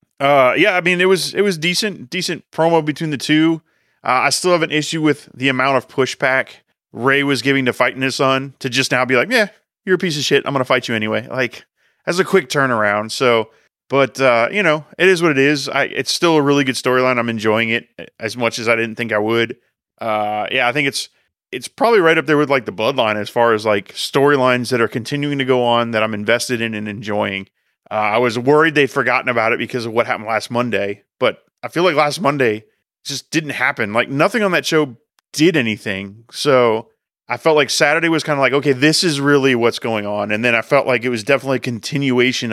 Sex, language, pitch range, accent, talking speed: male, English, 115-145 Hz, American, 240 wpm